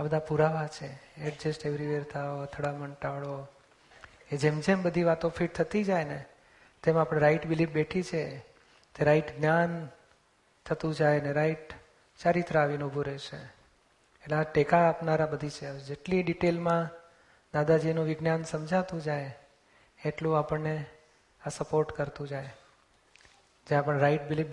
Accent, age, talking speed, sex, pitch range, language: native, 30-49, 50 wpm, male, 150-165 Hz, Gujarati